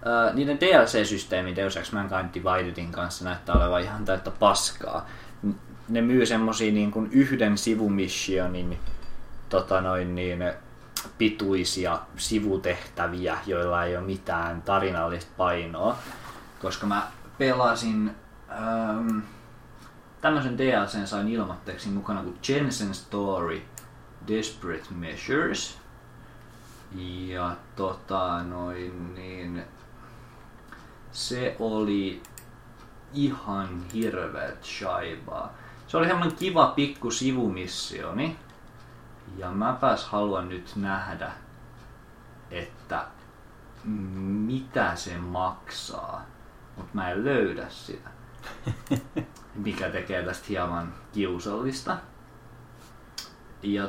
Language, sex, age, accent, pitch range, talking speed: Finnish, male, 20-39, native, 90-115 Hz, 90 wpm